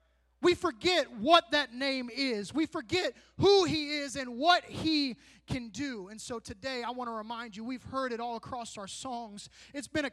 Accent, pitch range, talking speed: American, 255-345 Hz, 200 wpm